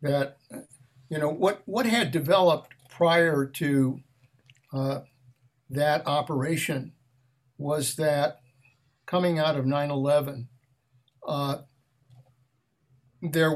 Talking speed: 90 wpm